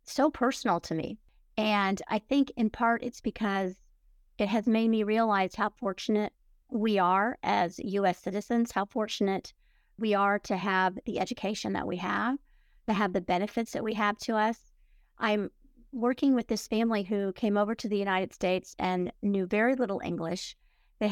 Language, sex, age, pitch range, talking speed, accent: English, female, 50-69, 195-225 Hz, 175 wpm, American